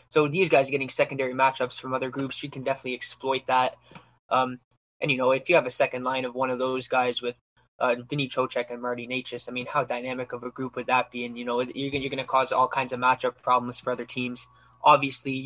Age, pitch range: 20-39, 125-135 Hz